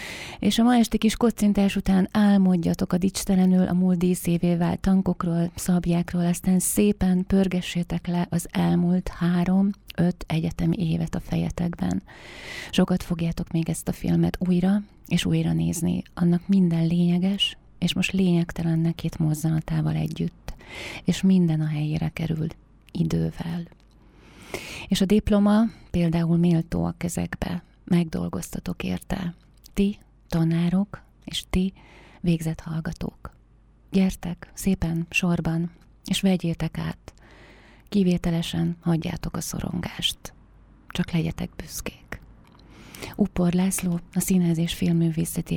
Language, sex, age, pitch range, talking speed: Hungarian, female, 30-49, 160-185 Hz, 115 wpm